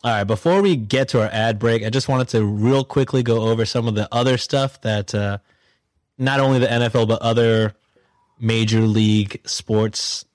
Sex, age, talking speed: male, 20-39, 190 wpm